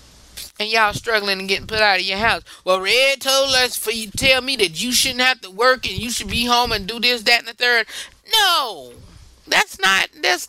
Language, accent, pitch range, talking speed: English, American, 235-300 Hz, 235 wpm